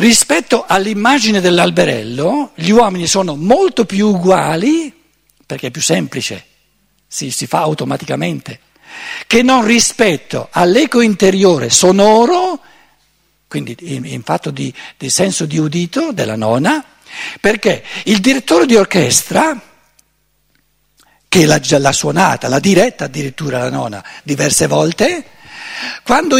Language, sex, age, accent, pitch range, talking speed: Italian, male, 60-79, native, 175-245 Hz, 115 wpm